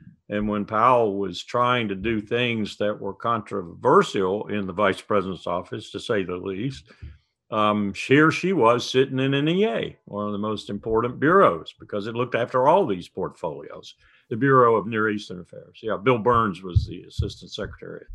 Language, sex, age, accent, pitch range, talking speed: English, male, 50-69, American, 95-115 Hz, 180 wpm